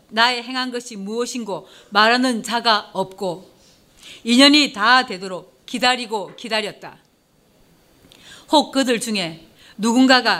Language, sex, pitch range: Korean, female, 200-255 Hz